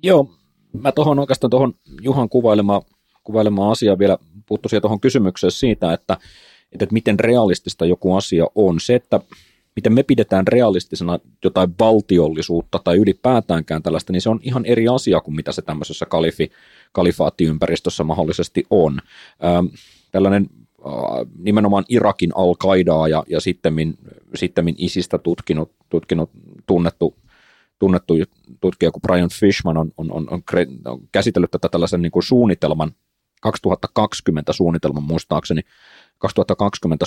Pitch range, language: 80-105 Hz, Finnish